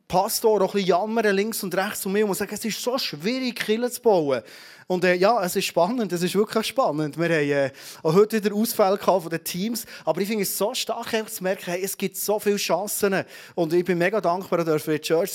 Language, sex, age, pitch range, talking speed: German, male, 30-49, 155-205 Hz, 235 wpm